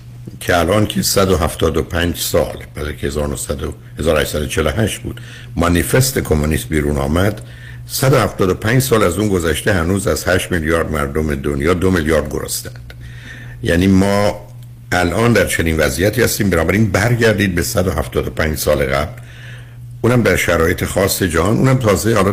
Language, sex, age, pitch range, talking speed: Persian, male, 60-79, 80-120 Hz, 130 wpm